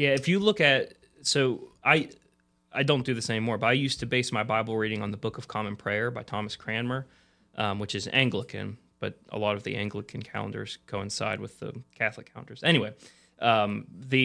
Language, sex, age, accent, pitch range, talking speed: English, male, 20-39, American, 105-130 Hz, 200 wpm